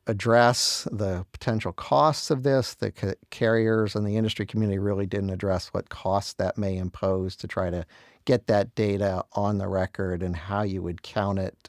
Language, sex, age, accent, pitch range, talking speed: English, male, 50-69, American, 95-115 Hz, 185 wpm